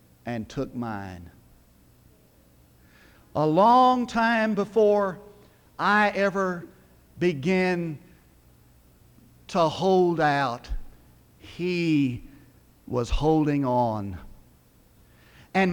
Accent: American